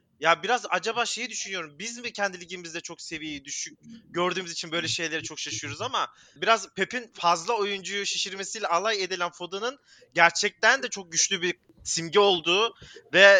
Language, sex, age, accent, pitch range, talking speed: Turkish, male, 30-49, native, 170-215 Hz, 155 wpm